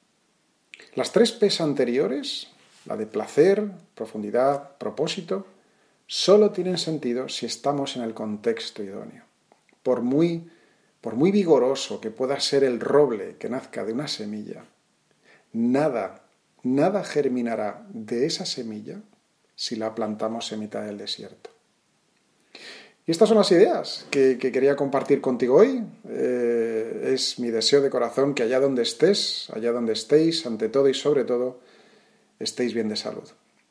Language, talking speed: Spanish, 140 wpm